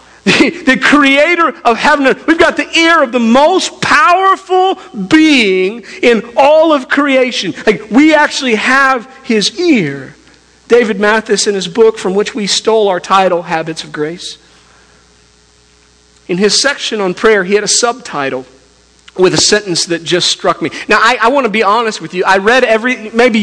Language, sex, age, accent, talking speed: English, male, 40-59, American, 175 wpm